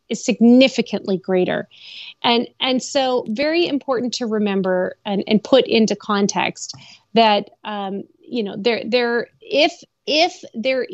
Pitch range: 205-245 Hz